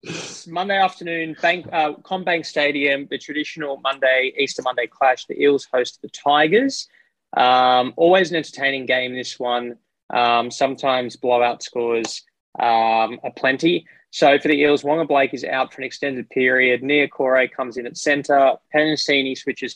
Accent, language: Australian, English